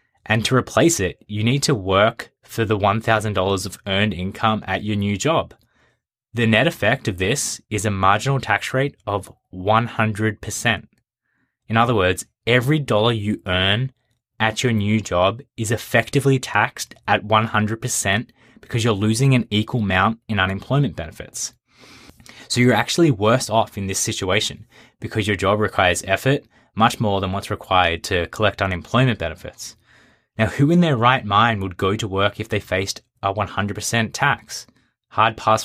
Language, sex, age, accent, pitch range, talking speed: English, male, 20-39, Australian, 100-120 Hz, 160 wpm